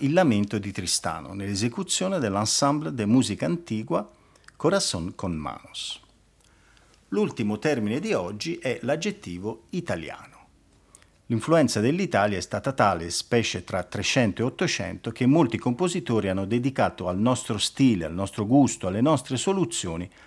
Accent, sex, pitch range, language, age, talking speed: native, male, 100-140 Hz, Italian, 50-69, 125 wpm